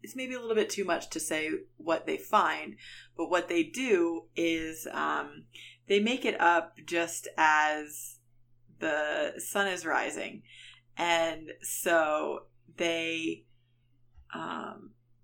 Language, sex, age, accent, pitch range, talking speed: English, female, 20-39, American, 120-195 Hz, 125 wpm